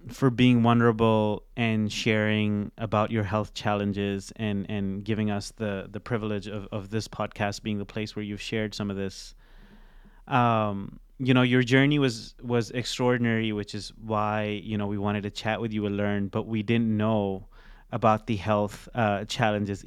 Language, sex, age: Urdu, male, 20-39